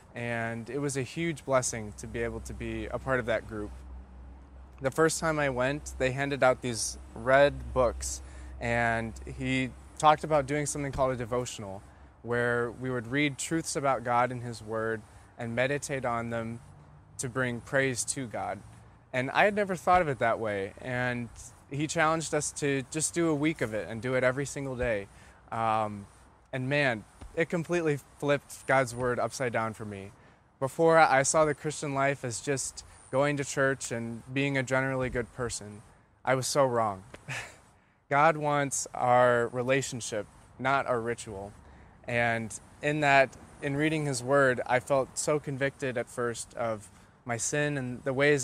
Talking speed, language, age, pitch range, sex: 175 wpm, English, 20-39, 115-140 Hz, male